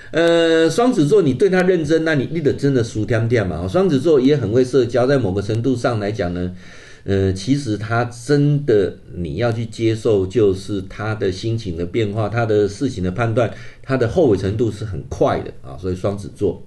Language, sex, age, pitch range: Chinese, male, 50-69, 100-135 Hz